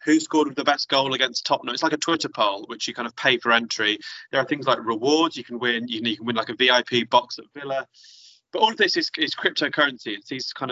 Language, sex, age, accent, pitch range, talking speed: English, male, 20-39, British, 115-135 Hz, 280 wpm